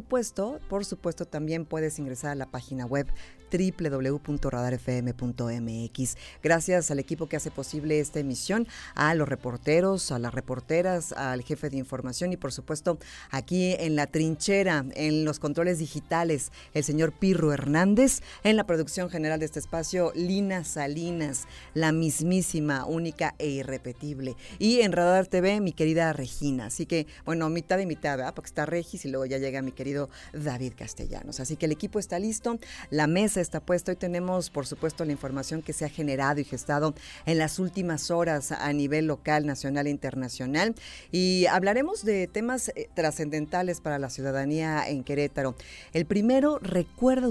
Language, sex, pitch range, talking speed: Spanish, female, 140-175 Hz, 160 wpm